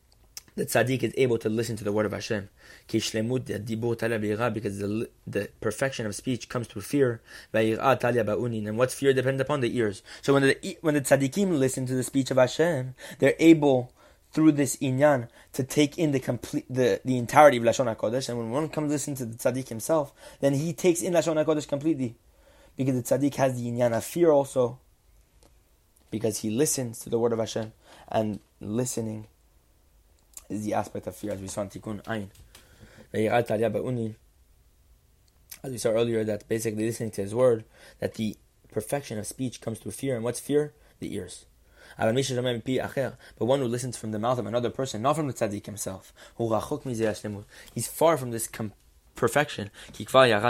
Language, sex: English, male